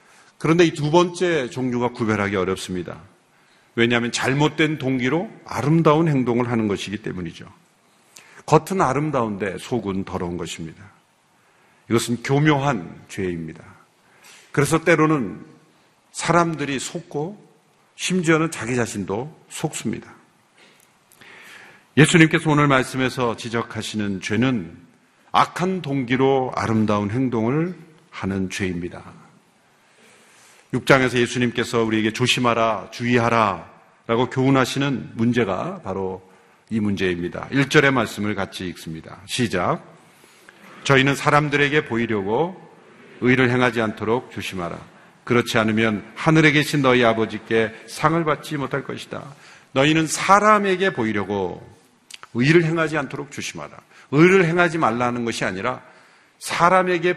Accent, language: native, Korean